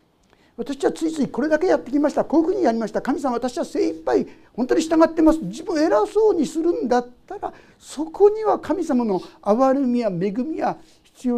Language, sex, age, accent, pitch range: Japanese, male, 50-69, native, 215-320 Hz